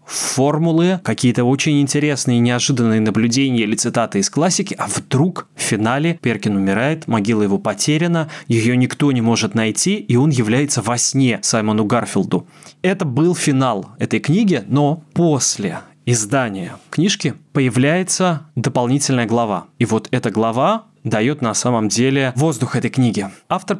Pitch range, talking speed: 120-155 Hz, 140 wpm